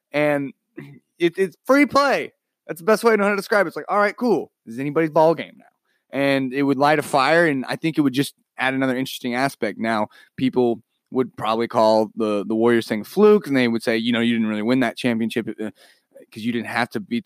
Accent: American